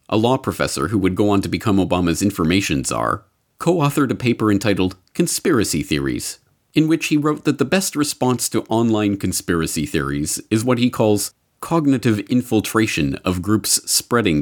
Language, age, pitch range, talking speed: English, 40-59, 85-145 Hz, 160 wpm